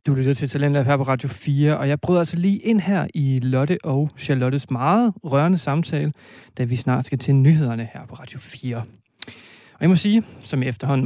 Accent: native